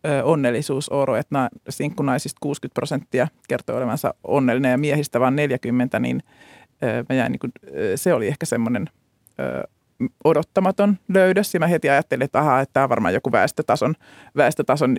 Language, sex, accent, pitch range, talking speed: Finnish, male, native, 135-160 Hz, 150 wpm